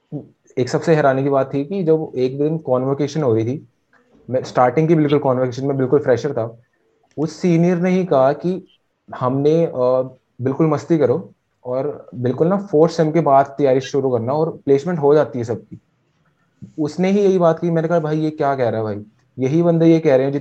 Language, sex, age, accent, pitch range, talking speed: English, male, 20-39, Indian, 125-155 Hz, 175 wpm